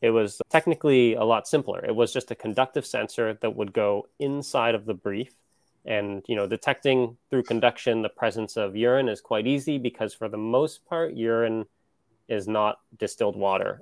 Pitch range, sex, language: 105-125 Hz, male, English